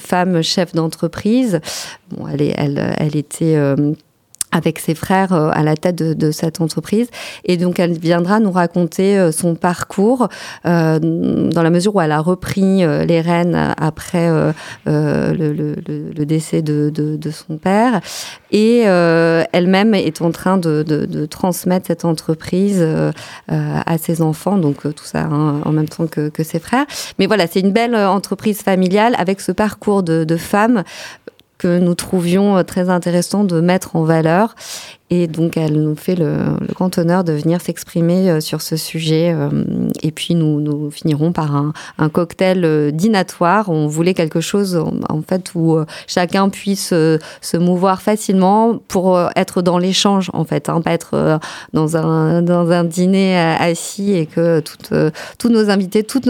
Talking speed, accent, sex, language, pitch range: 165 wpm, French, female, French, 155-190 Hz